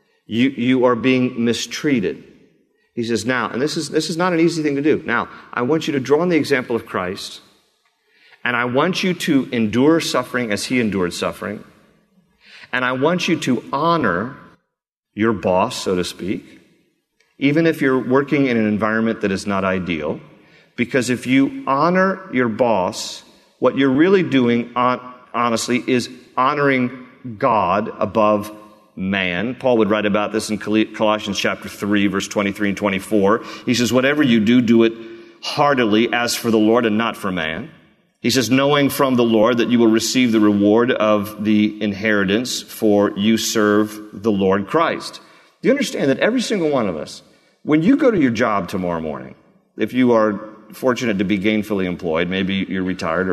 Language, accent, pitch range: English, American, 105-130 Hz